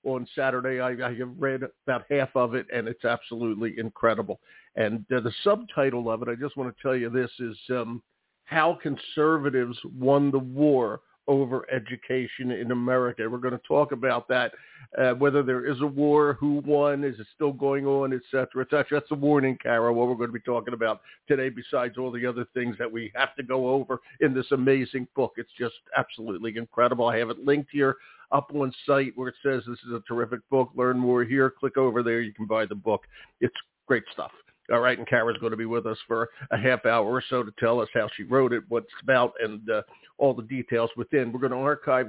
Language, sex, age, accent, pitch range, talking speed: English, male, 50-69, American, 120-140 Hz, 215 wpm